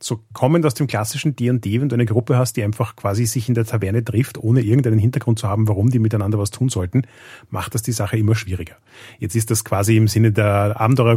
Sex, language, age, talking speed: male, German, 30-49, 235 wpm